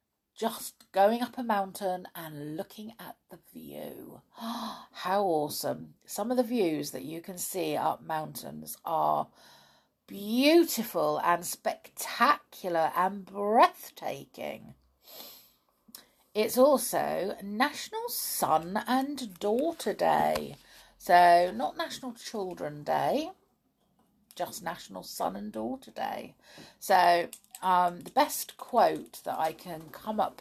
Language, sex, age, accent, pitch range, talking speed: English, female, 50-69, British, 165-230 Hz, 110 wpm